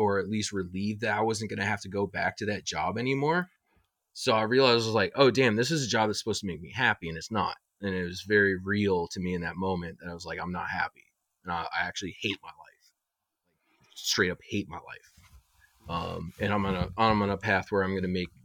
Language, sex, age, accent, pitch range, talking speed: English, male, 20-39, American, 95-110 Hz, 265 wpm